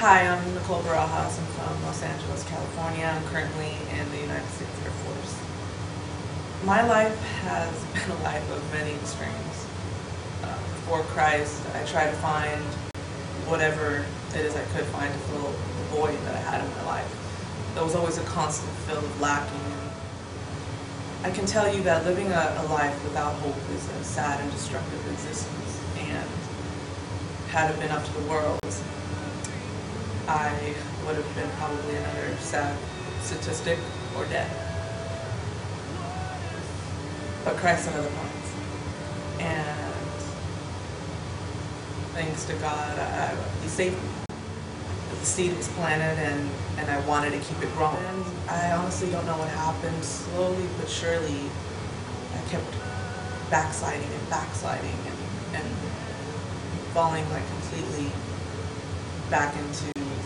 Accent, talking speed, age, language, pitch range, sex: American, 135 wpm, 20-39, English, 95-145 Hz, female